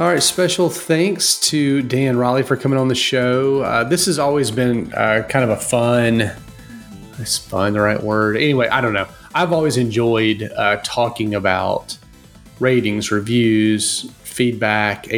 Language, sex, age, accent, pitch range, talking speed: English, male, 30-49, American, 105-140 Hz, 160 wpm